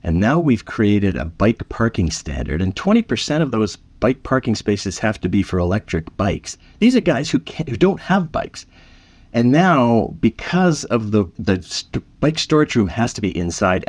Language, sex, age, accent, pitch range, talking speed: English, male, 50-69, American, 90-135 Hz, 180 wpm